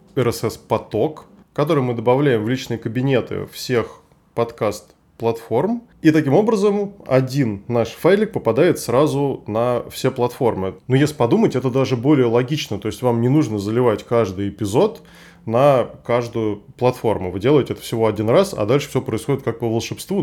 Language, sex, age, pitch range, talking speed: Russian, male, 20-39, 110-140 Hz, 150 wpm